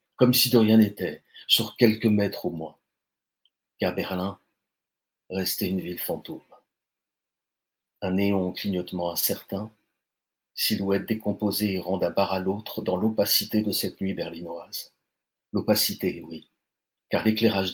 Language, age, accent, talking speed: French, 40-59, French, 130 wpm